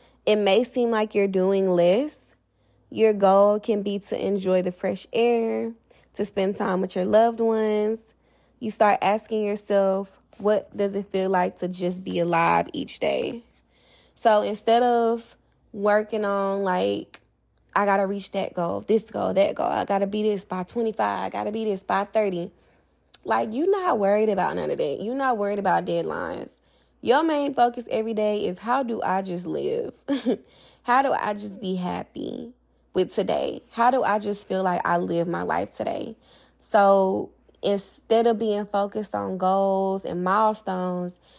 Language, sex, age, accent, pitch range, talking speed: English, female, 20-39, American, 190-225 Hz, 175 wpm